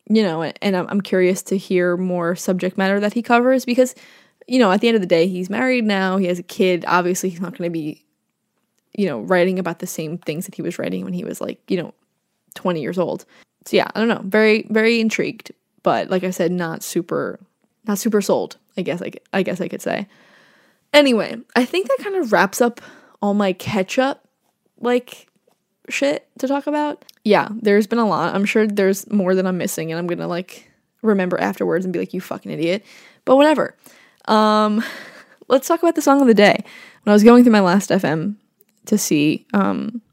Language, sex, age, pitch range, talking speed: English, female, 10-29, 185-230 Hz, 215 wpm